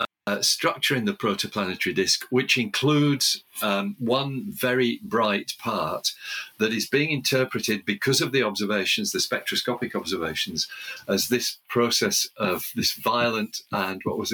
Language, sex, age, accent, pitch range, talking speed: English, male, 50-69, British, 100-135 Hz, 140 wpm